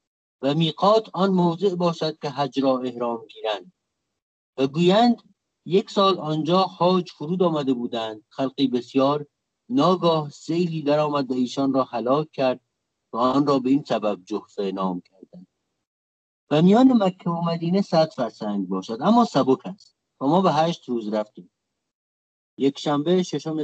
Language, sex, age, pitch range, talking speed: English, male, 50-69, 115-155 Hz, 145 wpm